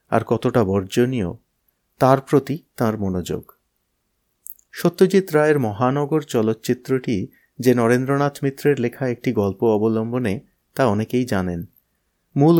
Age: 30-49